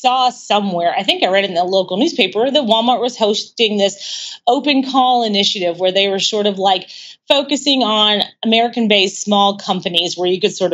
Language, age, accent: English, 30-49, American